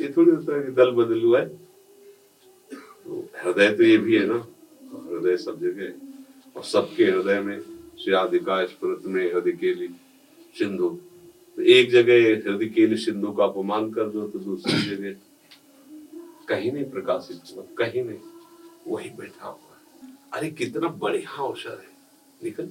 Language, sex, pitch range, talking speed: Hindi, male, 280-390 Hz, 130 wpm